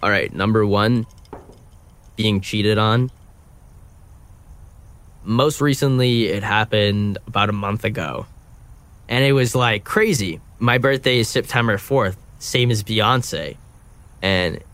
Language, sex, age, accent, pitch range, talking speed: English, male, 10-29, American, 95-115 Hz, 120 wpm